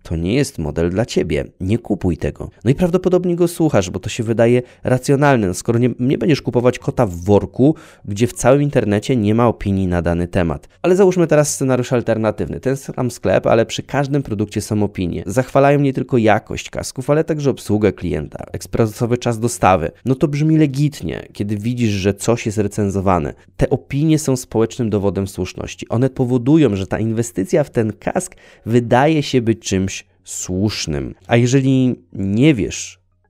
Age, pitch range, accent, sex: 20-39, 100-135 Hz, native, male